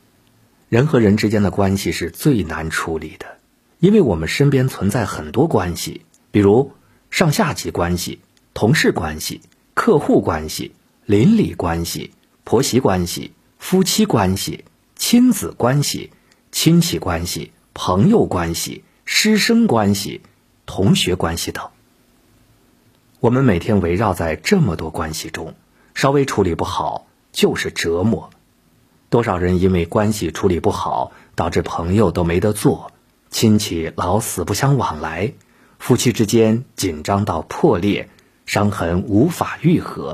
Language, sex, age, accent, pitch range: Chinese, male, 50-69, native, 85-120 Hz